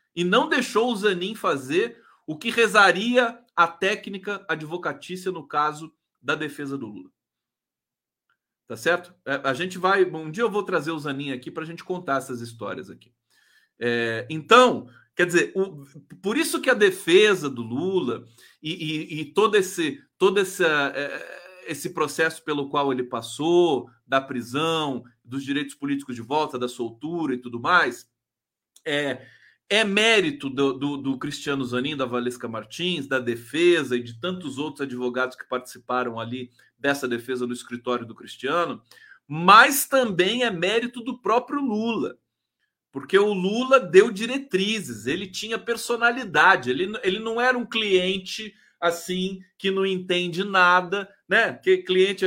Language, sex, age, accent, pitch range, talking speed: Portuguese, male, 40-59, Brazilian, 140-210 Hz, 145 wpm